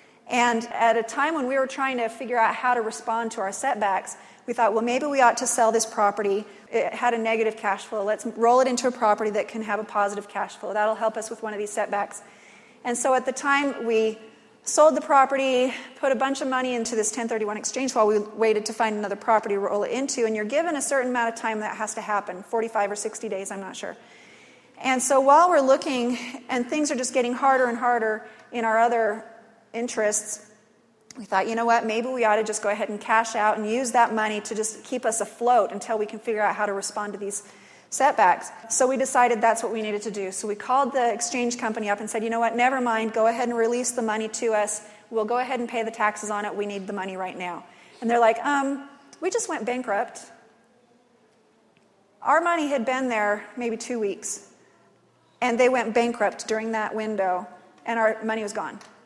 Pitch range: 215-245 Hz